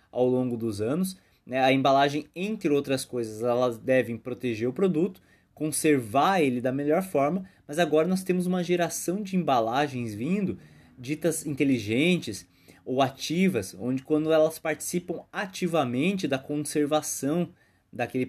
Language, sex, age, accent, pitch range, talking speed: Portuguese, male, 20-39, Brazilian, 115-160 Hz, 135 wpm